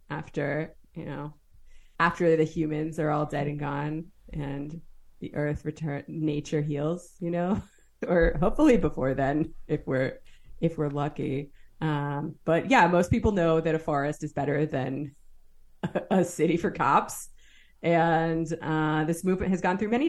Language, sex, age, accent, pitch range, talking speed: English, female, 30-49, American, 145-175 Hz, 160 wpm